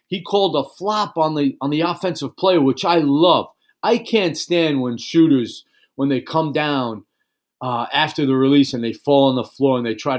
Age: 40-59